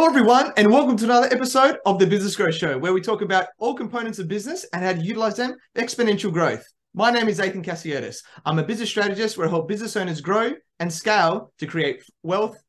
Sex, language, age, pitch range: male, English, 20-39, 165-225 Hz